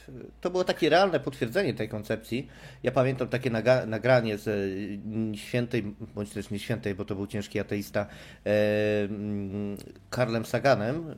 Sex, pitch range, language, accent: male, 105-130 Hz, Polish, native